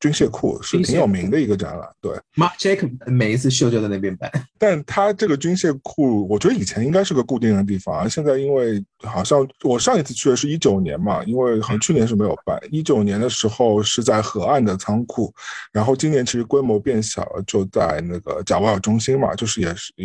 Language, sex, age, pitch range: Chinese, male, 50-69, 100-130 Hz